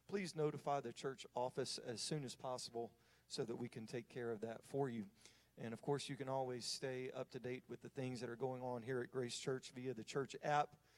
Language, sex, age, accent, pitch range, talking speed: English, male, 40-59, American, 120-145 Hz, 240 wpm